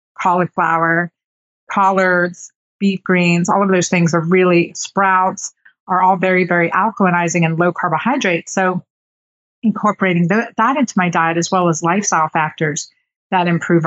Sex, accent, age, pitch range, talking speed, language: female, American, 50-69, 170-205 Hz, 145 wpm, English